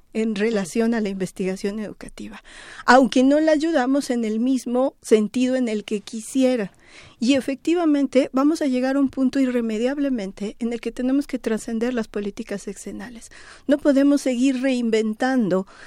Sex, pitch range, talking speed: female, 225-270 Hz, 150 wpm